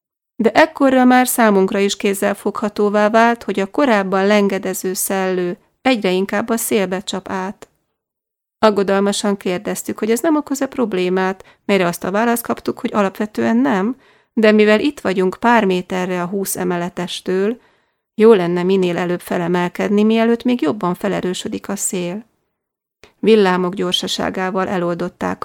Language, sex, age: Hungarian, female, 30-49